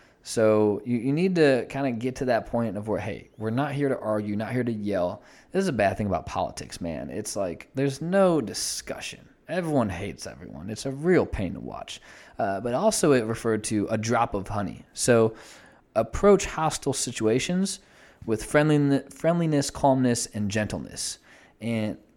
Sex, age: male, 20-39